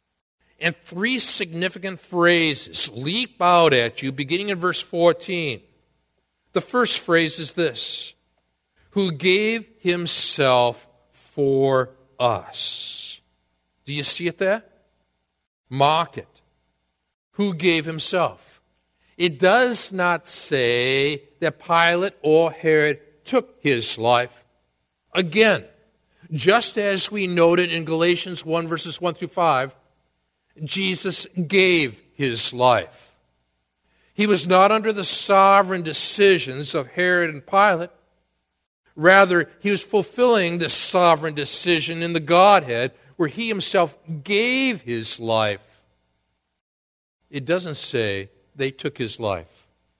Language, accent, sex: English, American, male